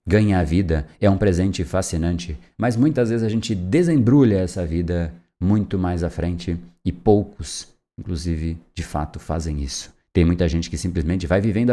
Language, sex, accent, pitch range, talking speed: Portuguese, male, Brazilian, 80-110 Hz, 170 wpm